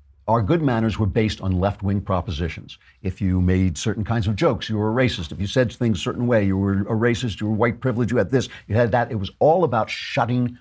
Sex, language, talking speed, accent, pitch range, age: male, English, 255 wpm, American, 100-135 Hz, 50-69